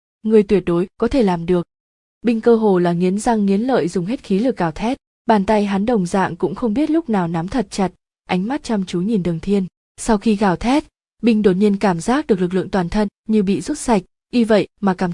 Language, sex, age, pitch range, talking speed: Vietnamese, female, 20-39, 185-230 Hz, 250 wpm